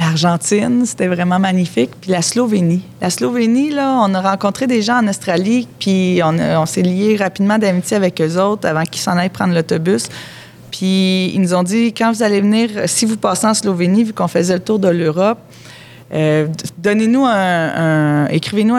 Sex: female